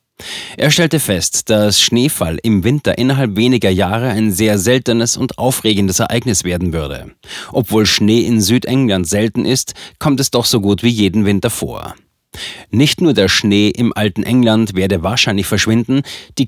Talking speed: 160 wpm